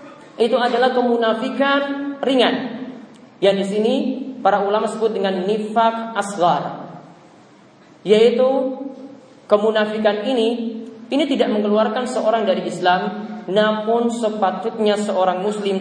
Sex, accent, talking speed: male, native, 100 wpm